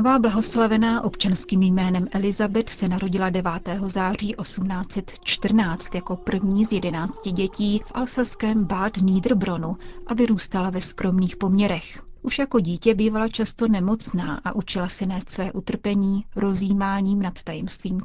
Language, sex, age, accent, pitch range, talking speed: Czech, female, 30-49, native, 190-220 Hz, 125 wpm